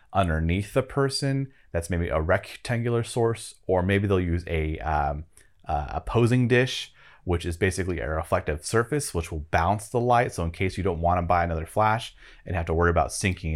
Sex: male